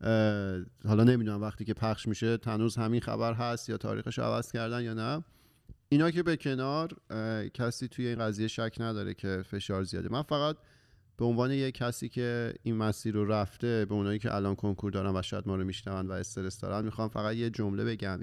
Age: 30-49